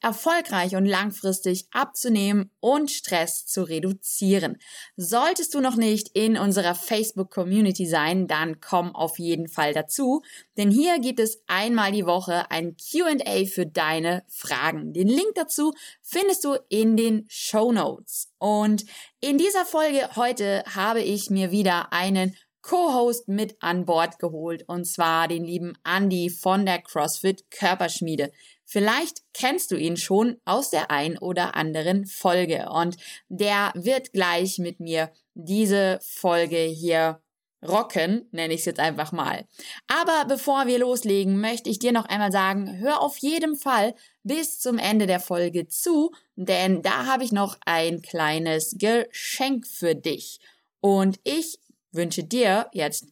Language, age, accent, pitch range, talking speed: German, 20-39, German, 175-235 Hz, 145 wpm